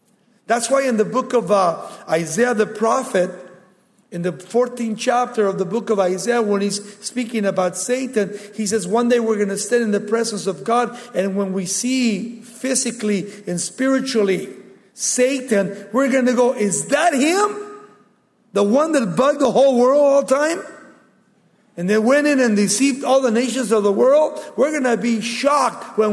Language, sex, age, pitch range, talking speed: English, male, 50-69, 200-245 Hz, 185 wpm